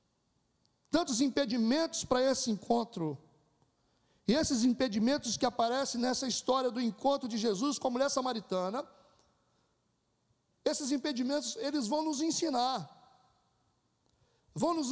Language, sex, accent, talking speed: Portuguese, male, Brazilian, 115 wpm